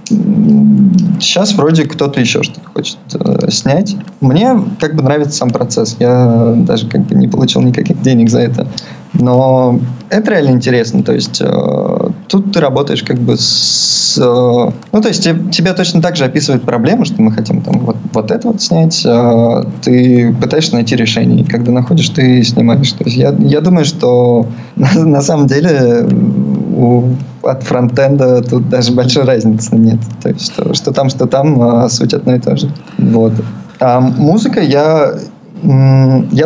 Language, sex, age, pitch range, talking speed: Russian, male, 20-39, 120-175 Hz, 170 wpm